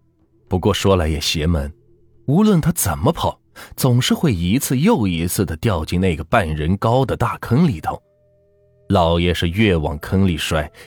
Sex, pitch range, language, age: male, 80-110 Hz, Chinese, 20-39